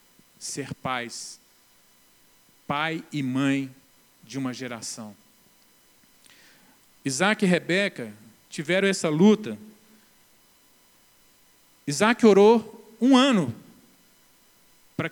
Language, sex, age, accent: Portuguese, male, 40-59, Brazilian